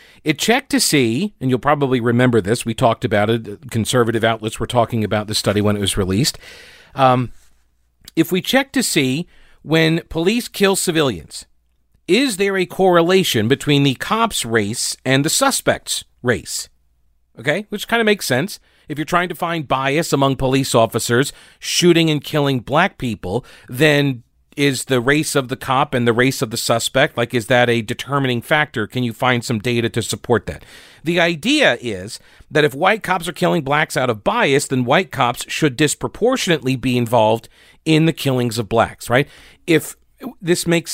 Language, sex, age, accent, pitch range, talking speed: English, male, 40-59, American, 115-165 Hz, 180 wpm